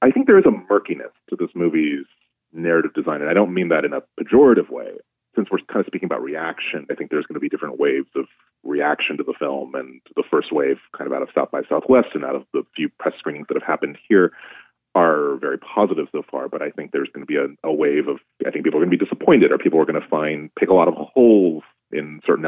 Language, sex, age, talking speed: English, male, 30-49, 265 wpm